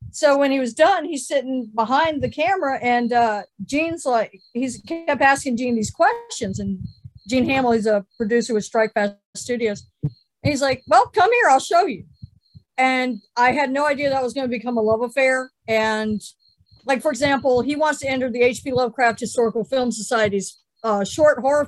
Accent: American